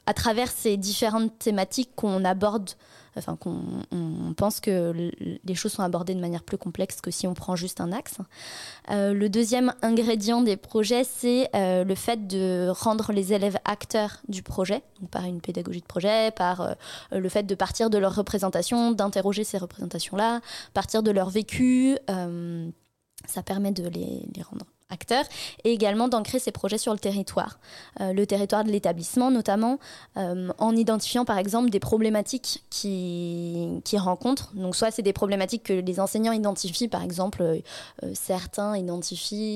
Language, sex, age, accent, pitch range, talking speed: French, female, 20-39, French, 185-220 Hz, 170 wpm